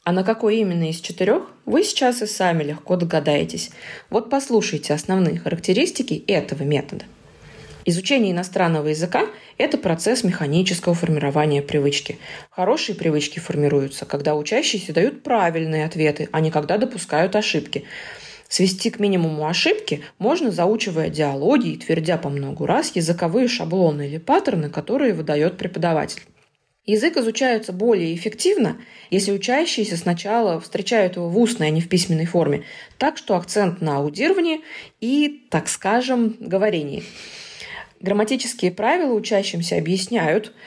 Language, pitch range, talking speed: Russian, 160-220 Hz, 130 wpm